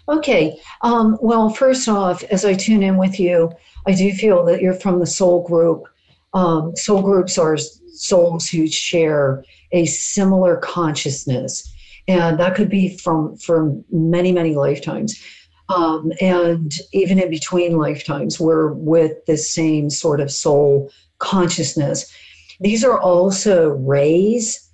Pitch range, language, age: 160-195 Hz, English, 50-69